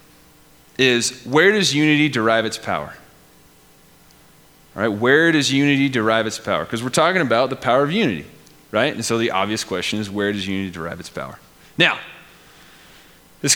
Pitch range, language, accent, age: 110-155 Hz, English, American, 30-49